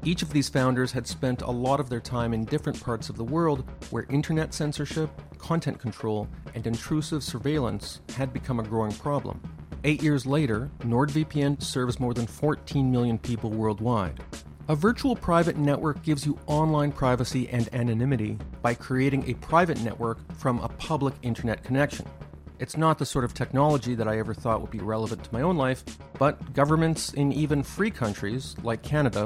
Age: 40-59